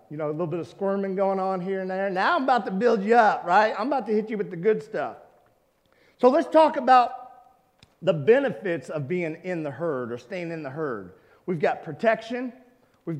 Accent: American